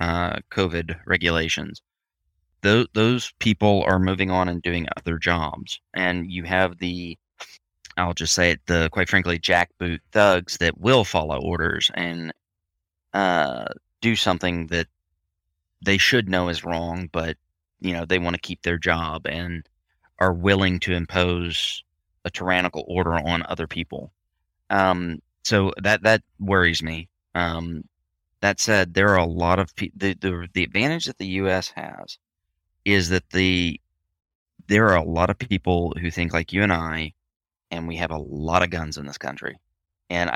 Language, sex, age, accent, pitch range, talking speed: English, male, 20-39, American, 80-95 Hz, 165 wpm